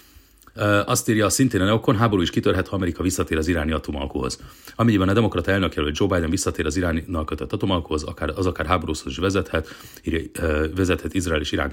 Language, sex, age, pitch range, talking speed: Hungarian, male, 40-59, 80-100 Hz, 185 wpm